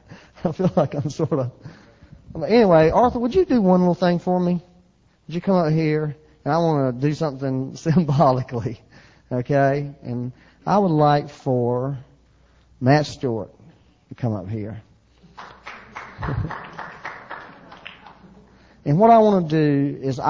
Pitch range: 110-145 Hz